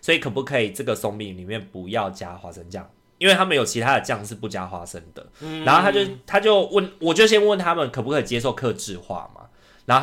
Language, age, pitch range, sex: Chinese, 20-39, 100-150 Hz, male